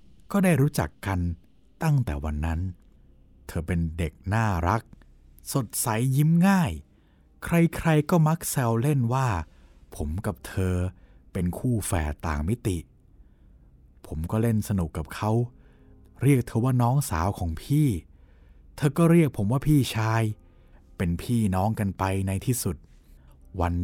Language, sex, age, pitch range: Thai, male, 60-79, 80-120 Hz